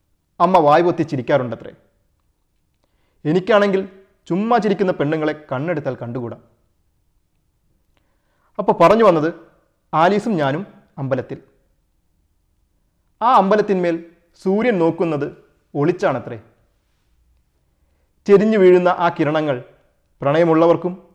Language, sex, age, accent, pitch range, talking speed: Malayalam, male, 30-49, native, 110-165 Hz, 70 wpm